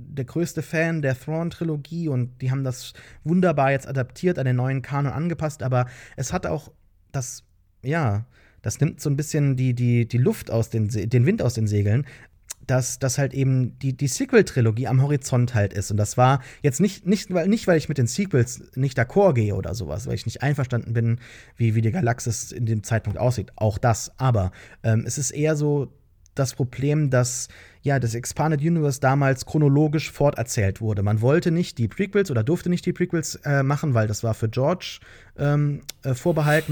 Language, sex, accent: English, male, German